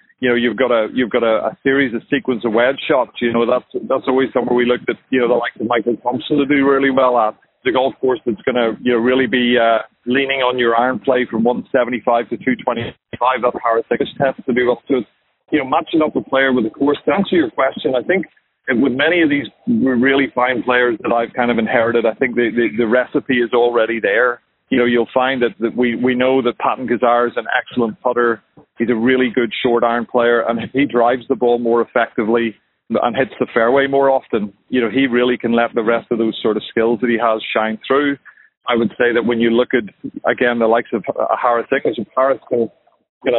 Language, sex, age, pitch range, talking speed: English, male, 40-59, 115-130 Hz, 240 wpm